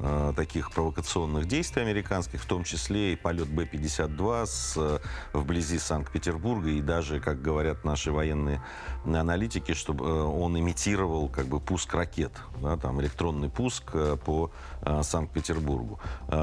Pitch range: 75-90 Hz